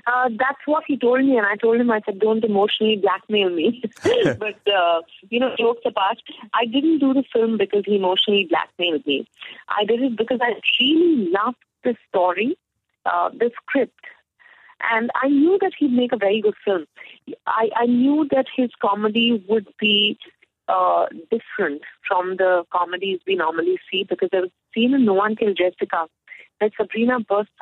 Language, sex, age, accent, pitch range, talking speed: English, female, 30-49, Indian, 195-265 Hz, 180 wpm